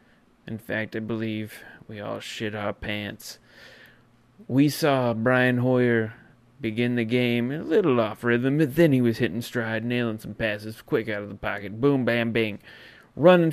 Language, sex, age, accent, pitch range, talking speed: English, male, 30-49, American, 110-135 Hz, 175 wpm